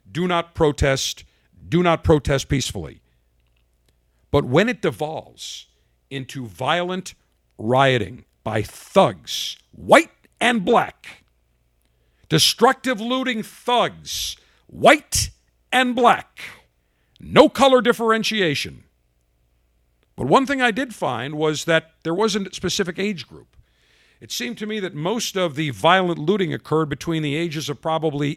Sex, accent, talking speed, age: male, American, 125 wpm, 50-69